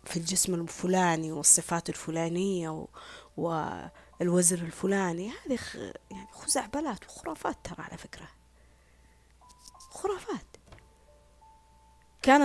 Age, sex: 20-39, female